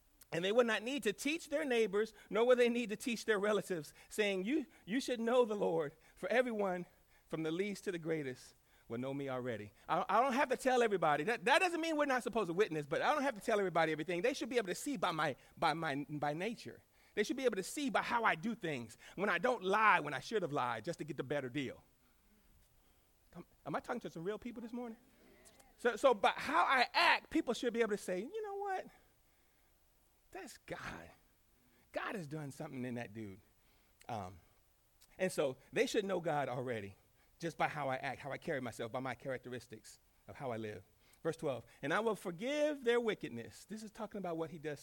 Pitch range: 145-230 Hz